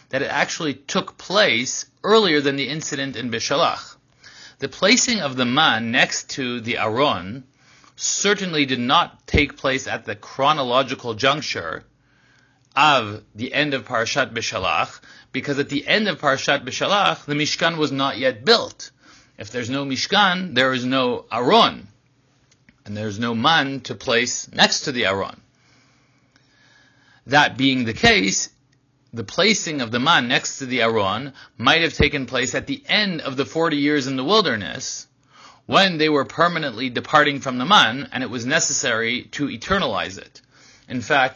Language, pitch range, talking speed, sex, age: English, 120-145 Hz, 160 wpm, male, 30-49